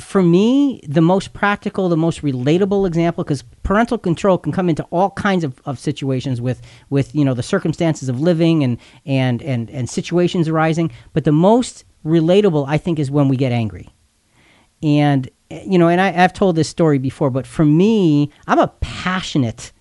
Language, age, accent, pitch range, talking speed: English, 40-59, American, 130-180 Hz, 185 wpm